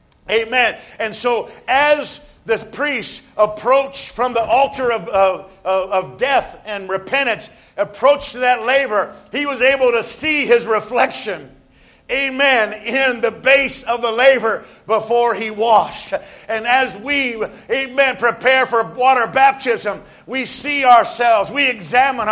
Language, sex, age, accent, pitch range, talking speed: English, male, 50-69, American, 210-285 Hz, 130 wpm